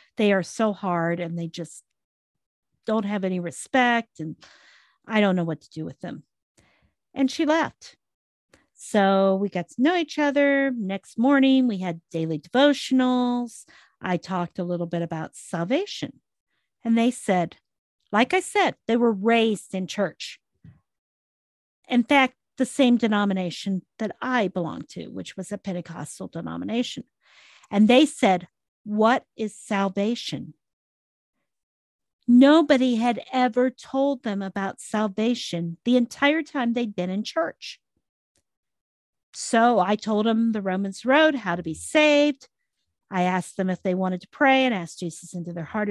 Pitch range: 185-255 Hz